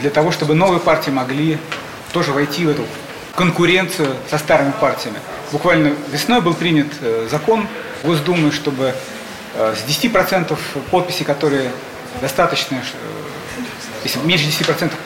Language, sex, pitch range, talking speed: Russian, male, 150-180 Hz, 115 wpm